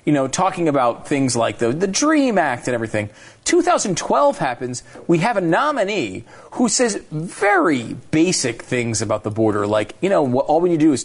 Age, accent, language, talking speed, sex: 40-59, American, English, 195 wpm, male